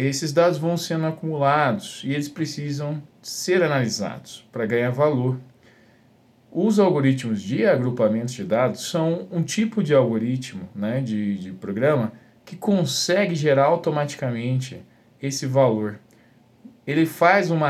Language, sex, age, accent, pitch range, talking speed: Portuguese, male, 50-69, Brazilian, 120-175 Hz, 125 wpm